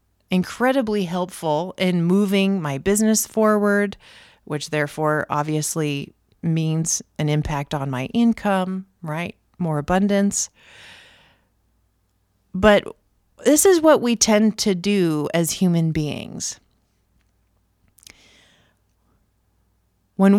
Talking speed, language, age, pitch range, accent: 90 wpm, English, 30-49, 120-195 Hz, American